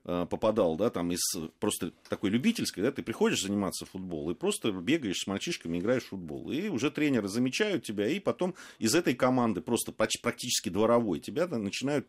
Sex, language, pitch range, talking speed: male, Russian, 90-125 Hz, 175 wpm